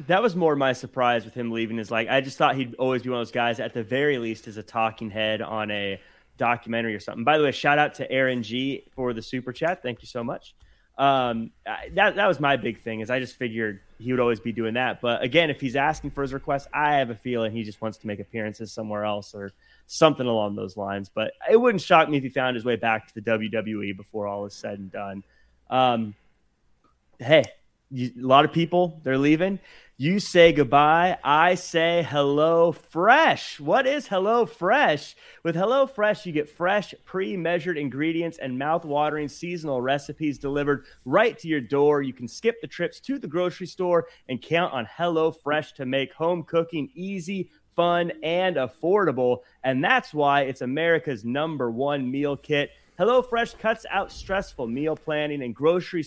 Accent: American